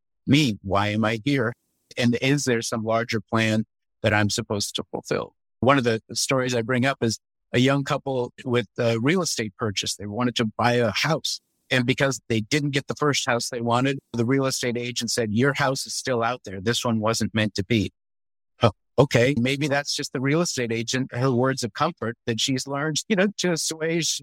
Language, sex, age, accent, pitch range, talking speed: English, male, 50-69, American, 115-140 Hz, 210 wpm